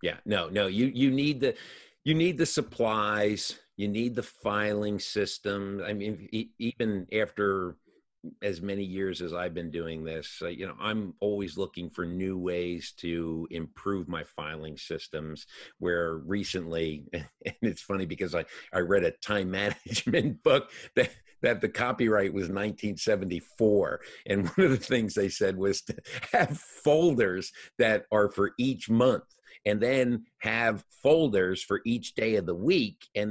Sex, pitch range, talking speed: male, 95-125 Hz, 160 wpm